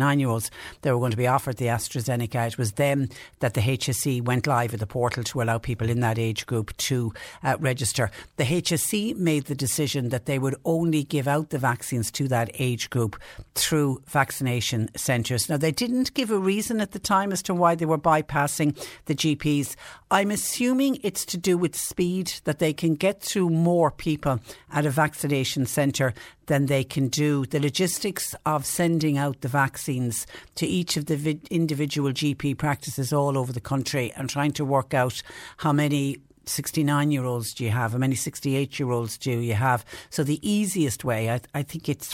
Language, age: English, 60-79